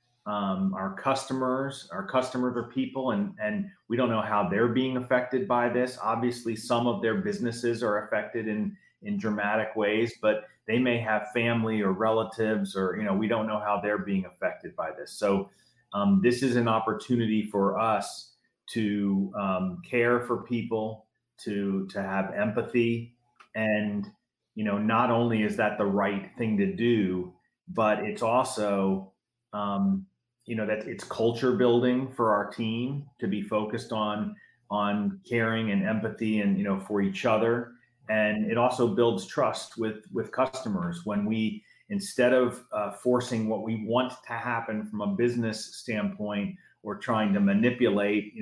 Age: 30-49